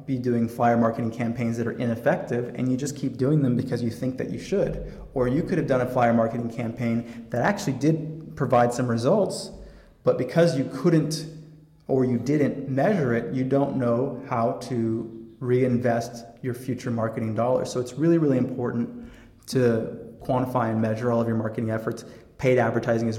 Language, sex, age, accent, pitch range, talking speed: English, male, 30-49, American, 115-130 Hz, 185 wpm